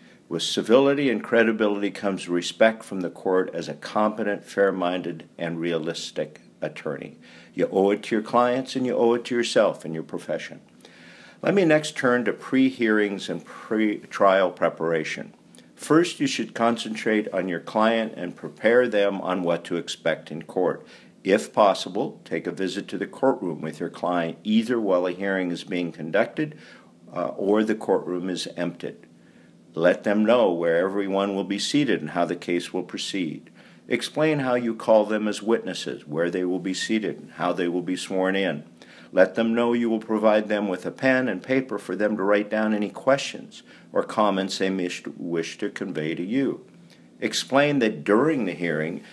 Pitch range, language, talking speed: 90-120 Hz, English, 175 wpm